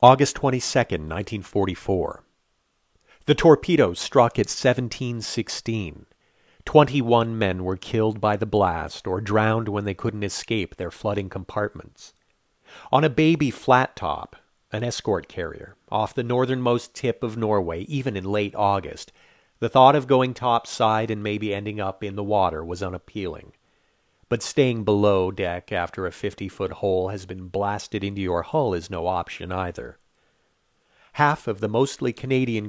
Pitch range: 100-125 Hz